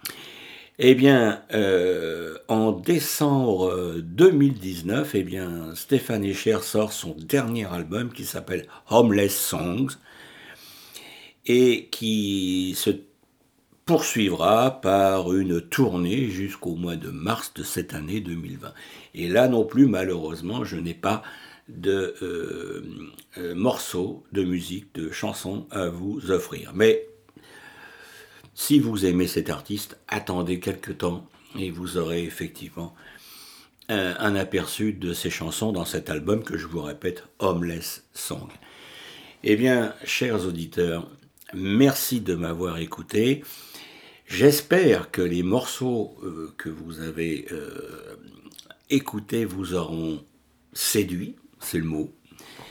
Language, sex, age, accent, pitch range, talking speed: French, male, 60-79, French, 90-120 Hz, 110 wpm